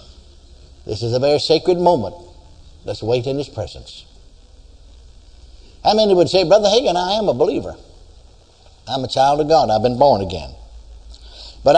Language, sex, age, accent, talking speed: English, male, 60-79, American, 165 wpm